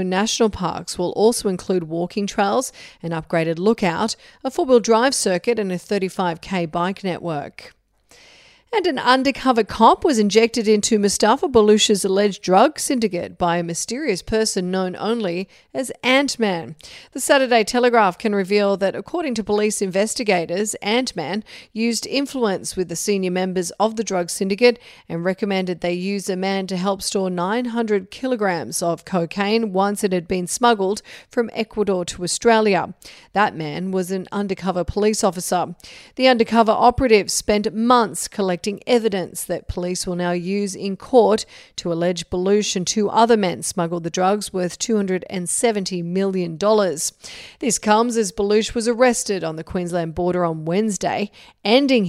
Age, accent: 40-59, Australian